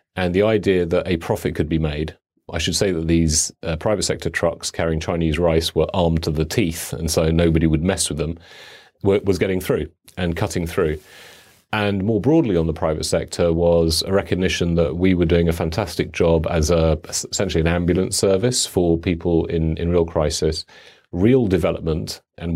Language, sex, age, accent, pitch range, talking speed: English, male, 40-59, British, 80-90 Hz, 190 wpm